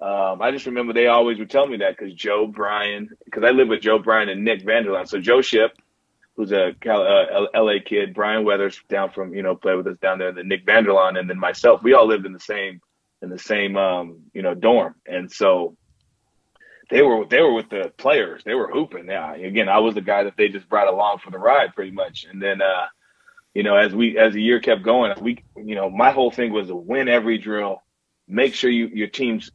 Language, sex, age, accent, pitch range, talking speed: English, male, 30-49, American, 95-120 Hz, 245 wpm